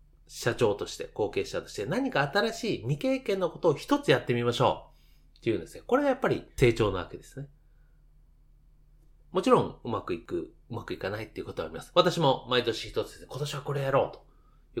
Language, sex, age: Japanese, male, 30-49